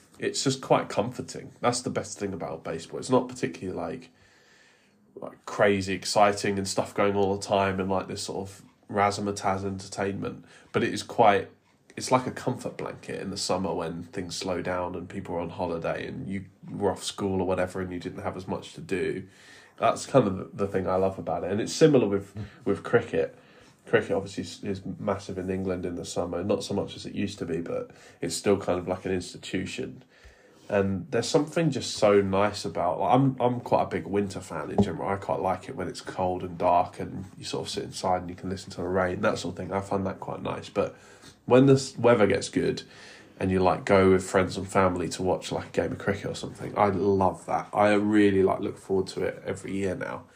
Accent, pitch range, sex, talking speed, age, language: British, 90-100 Hz, male, 225 wpm, 20-39, English